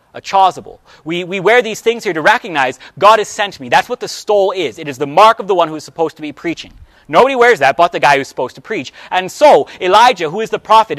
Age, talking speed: 30-49, 275 wpm